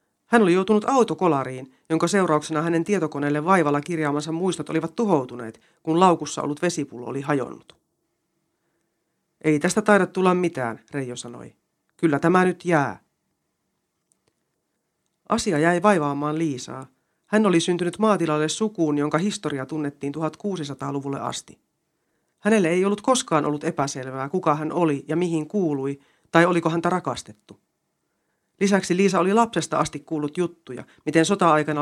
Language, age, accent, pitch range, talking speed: Finnish, 30-49, native, 145-180 Hz, 130 wpm